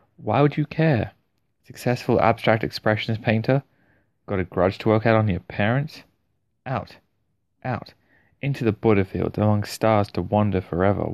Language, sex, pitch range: English, male, 90-110 Hz